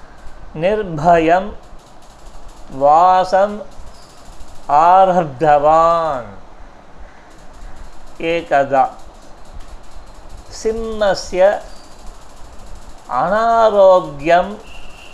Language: Tamil